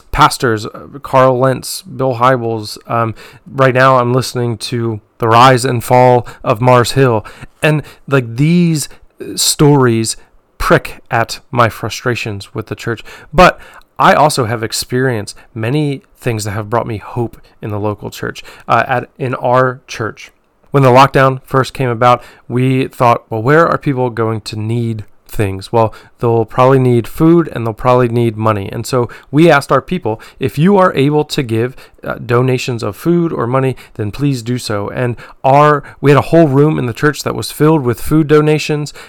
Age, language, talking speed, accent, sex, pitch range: 30-49, English, 175 wpm, American, male, 115-140 Hz